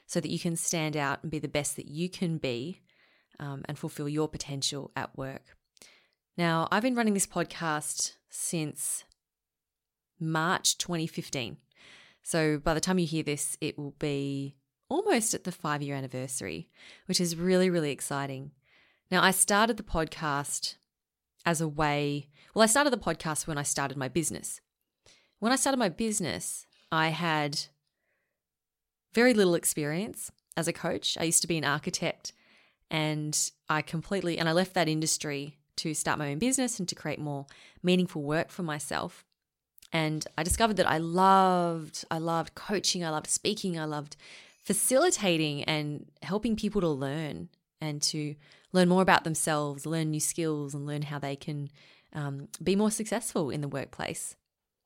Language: English